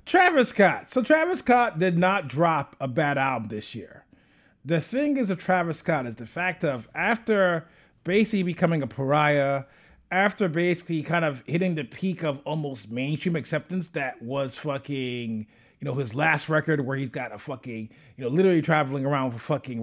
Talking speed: 180 wpm